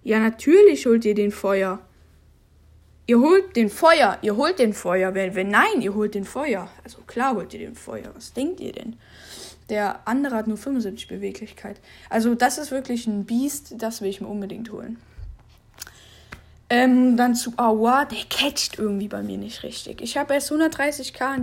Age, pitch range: 10-29, 205-255 Hz